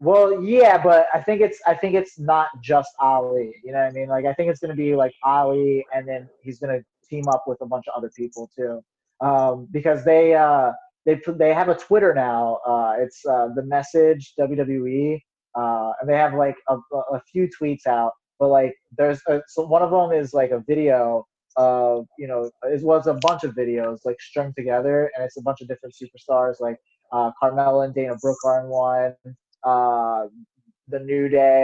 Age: 20-39